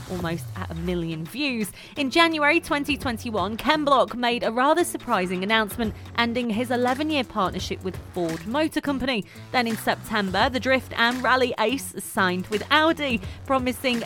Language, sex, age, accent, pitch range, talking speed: English, female, 30-49, British, 195-265 Hz, 150 wpm